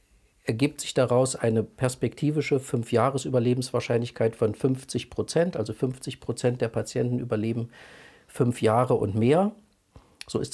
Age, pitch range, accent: 50-69, 110-135 Hz, German